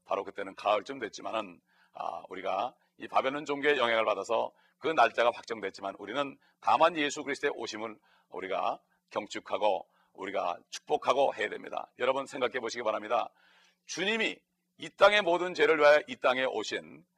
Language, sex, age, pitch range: Korean, male, 40-59, 125-175 Hz